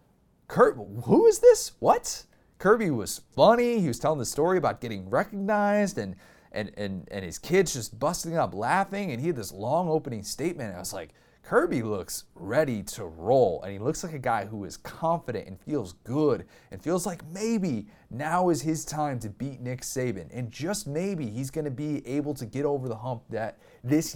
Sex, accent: male, American